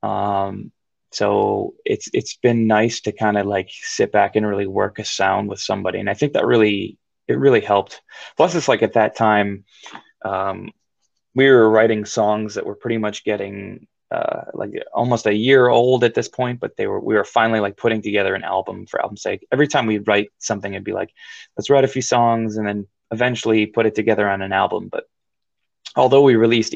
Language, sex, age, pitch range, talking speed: English, male, 20-39, 100-125 Hz, 205 wpm